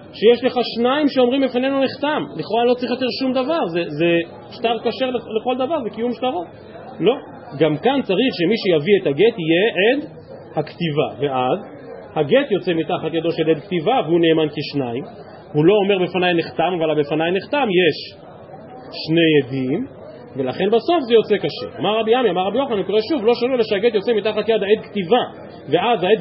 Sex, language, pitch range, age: male, Hebrew, 165-235 Hz, 40-59